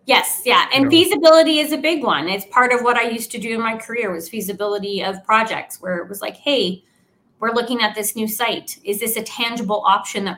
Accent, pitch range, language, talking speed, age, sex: American, 205-250 Hz, English, 230 wpm, 30-49, female